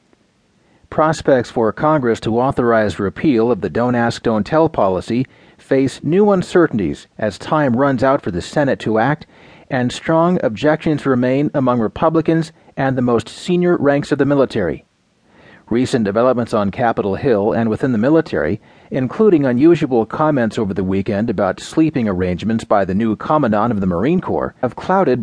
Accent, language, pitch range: American, English, 115-155 Hz